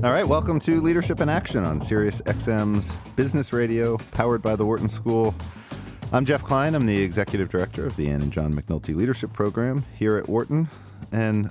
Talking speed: 190 wpm